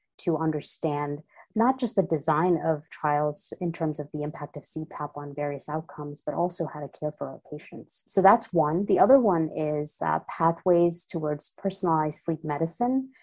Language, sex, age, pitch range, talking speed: English, female, 30-49, 155-190 Hz, 175 wpm